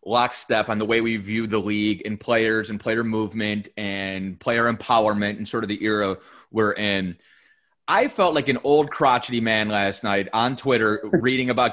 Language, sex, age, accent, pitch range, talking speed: English, male, 30-49, American, 110-155 Hz, 185 wpm